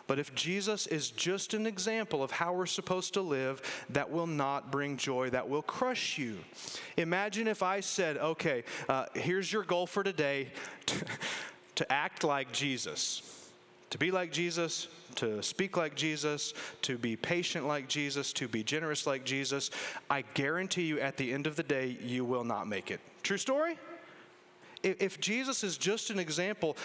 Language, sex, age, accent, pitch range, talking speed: English, male, 30-49, American, 140-190 Hz, 175 wpm